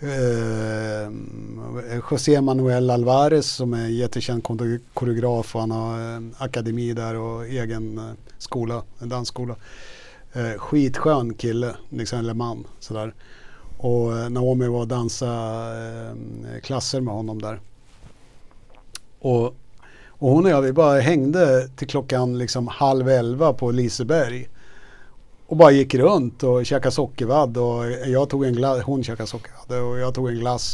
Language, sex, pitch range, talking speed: English, male, 115-130 Hz, 135 wpm